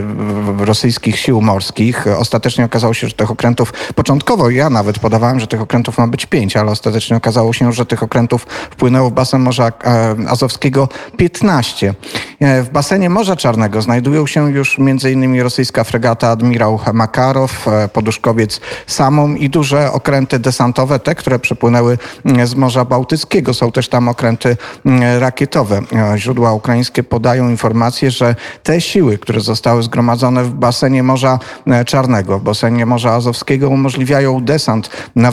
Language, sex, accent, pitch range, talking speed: Polish, male, native, 115-130 Hz, 140 wpm